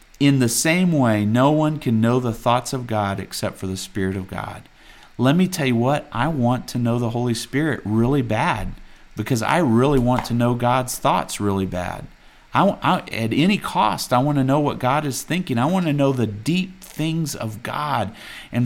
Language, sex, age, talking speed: English, male, 40-59, 210 wpm